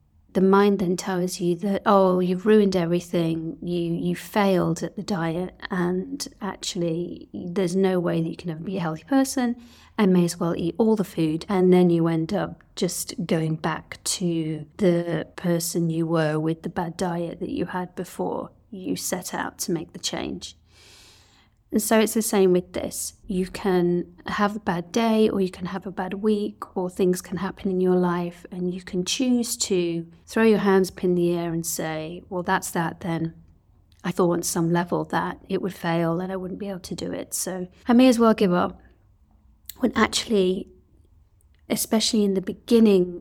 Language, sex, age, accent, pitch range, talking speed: English, female, 40-59, British, 170-200 Hz, 195 wpm